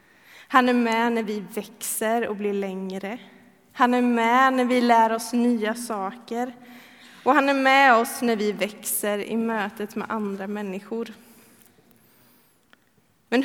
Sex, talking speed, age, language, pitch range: female, 145 wpm, 20-39, Swedish, 210-245 Hz